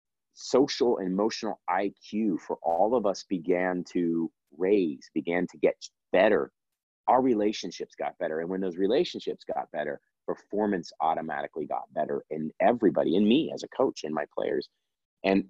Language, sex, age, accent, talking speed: English, male, 30-49, American, 155 wpm